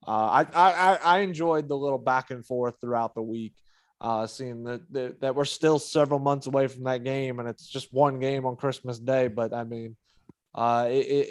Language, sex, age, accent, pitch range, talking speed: English, male, 20-39, American, 130-155 Hz, 205 wpm